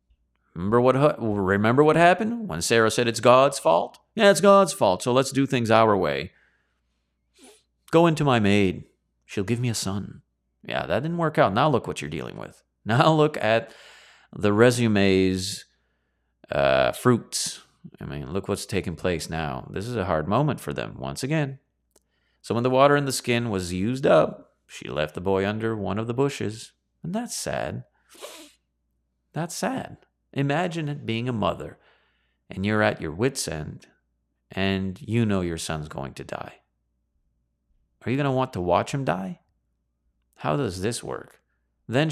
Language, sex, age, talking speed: English, male, 30-49, 170 wpm